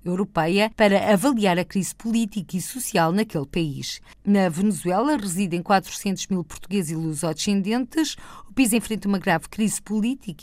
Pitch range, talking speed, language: 175-225 Hz, 150 wpm, Portuguese